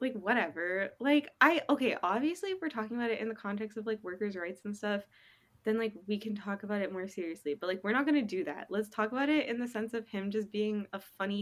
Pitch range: 185-240 Hz